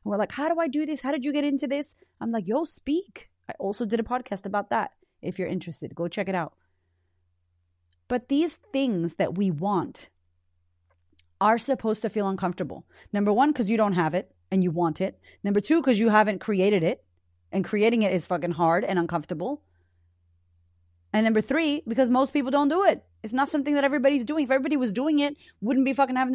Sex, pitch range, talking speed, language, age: female, 180-280 Hz, 210 wpm, English, 30-49